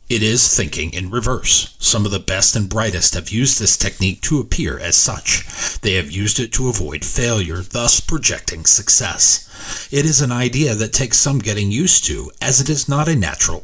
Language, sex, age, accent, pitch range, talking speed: English, male, 40-59, American, 95-120 Hz, 200 wpm